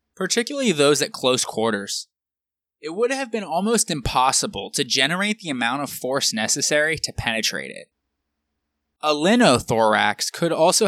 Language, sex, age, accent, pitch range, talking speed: English, male, 20-39, American, 110-185 Hz, 140 wpm